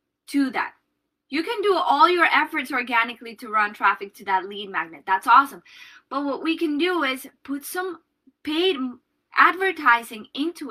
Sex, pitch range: female, 245-320 Hz